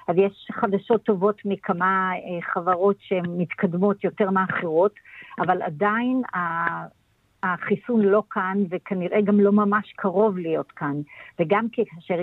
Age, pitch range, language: 50-69, 175-210 Hz, Hebrew